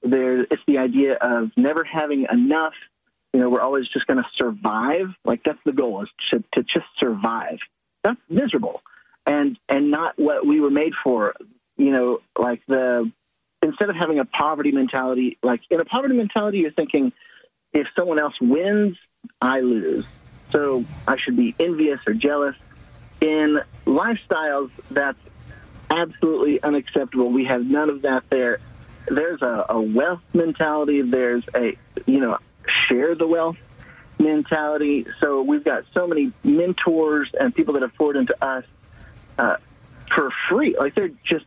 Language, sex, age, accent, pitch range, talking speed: English, male, 40-59, American, 130-170 Hz, 155 wpm